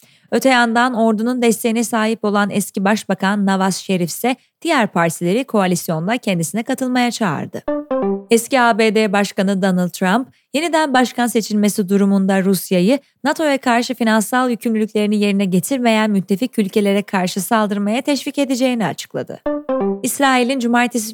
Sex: female